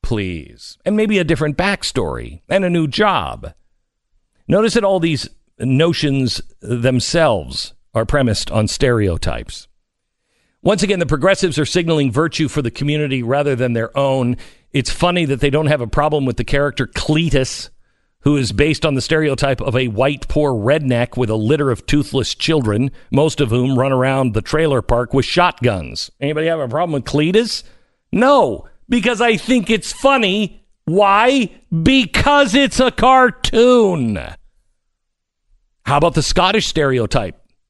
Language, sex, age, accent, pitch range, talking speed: English, male, 50-69, American, 125-185 Hz, 150 wpm